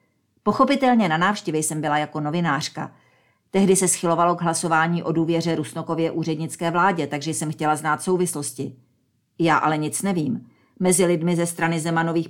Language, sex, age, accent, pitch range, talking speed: Czech, female, 40-59, native, 155-185 Hz, 150 wpm